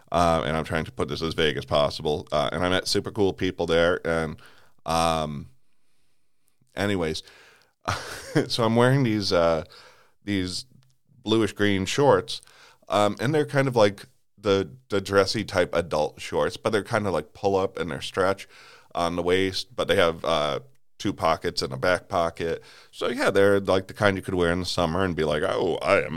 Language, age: English, 30-49